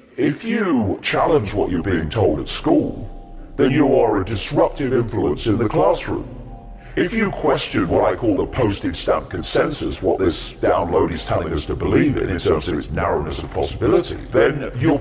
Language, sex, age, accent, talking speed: English, female, 50-69, British, 185 wpm